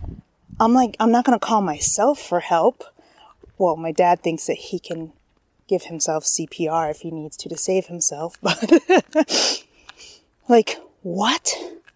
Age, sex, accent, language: 20-39, female, American, English